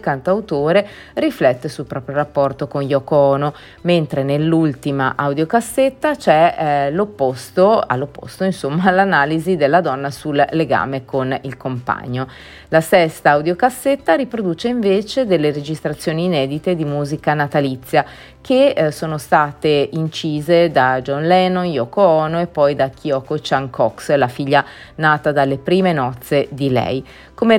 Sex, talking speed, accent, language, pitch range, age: female, 130 wpm, native, Italian, 140-185 Hz, 30-49